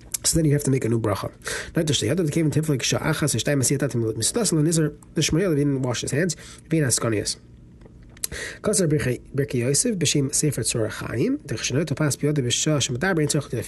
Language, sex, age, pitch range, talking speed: English, male, 30-49, 115-150 Hz, 50 wpm